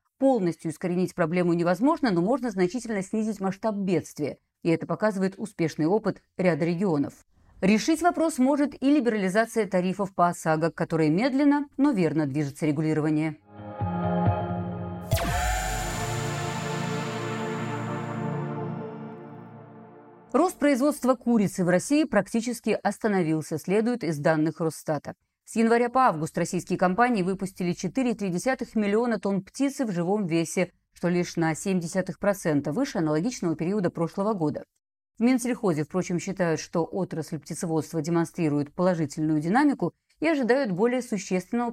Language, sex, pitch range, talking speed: Russian, female, 160-230 Hz, 115 wpm